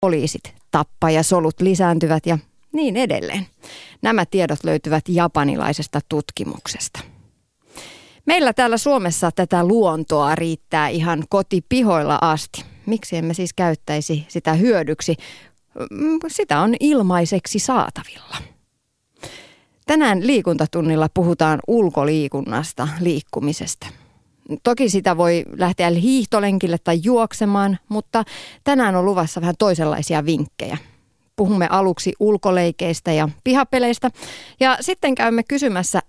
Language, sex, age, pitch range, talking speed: Finnish, female, 30-49, 160-215 Hz, 100 wpm